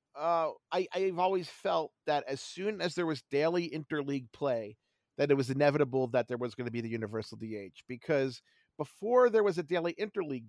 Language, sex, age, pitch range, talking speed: English, male, 40-59, 130-180 Hz, 195 wpm